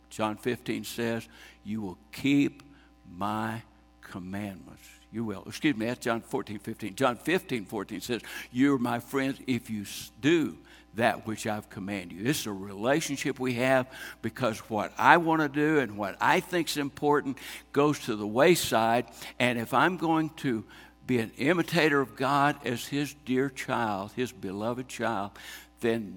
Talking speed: 165 wpm